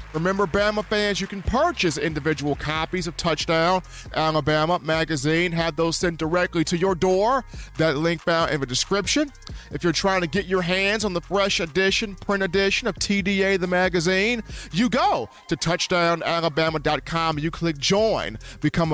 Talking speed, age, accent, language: 160 wpm, 40-59, American, English